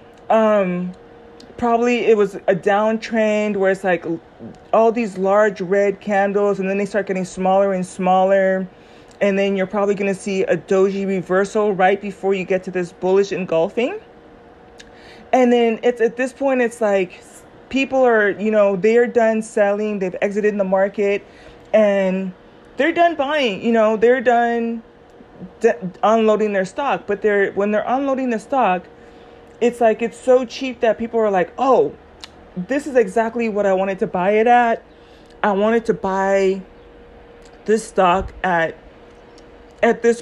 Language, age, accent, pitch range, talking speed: English, 20-39, American, 195-240 Hz, 160 wpm